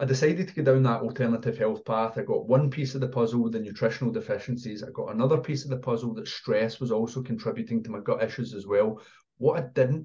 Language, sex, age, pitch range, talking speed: English, male, 30-49, 110-130 Hz, 245 wpm